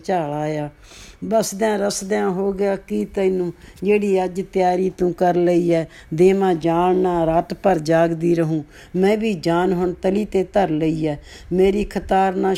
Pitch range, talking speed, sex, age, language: 170-200 Hz, 155 wpm, female, 60-79, Punjabi